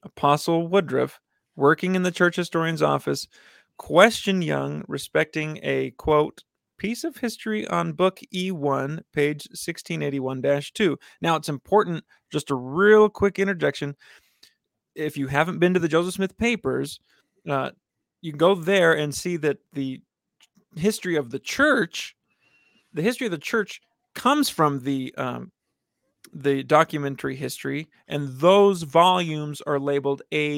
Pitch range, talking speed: 140-185 Hz, 135 wpm